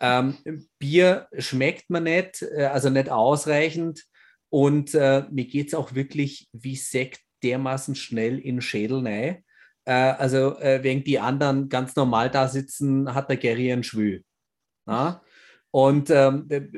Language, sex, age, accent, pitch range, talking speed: German, male, 30-49, German, 125-150 Hz, 140 wpm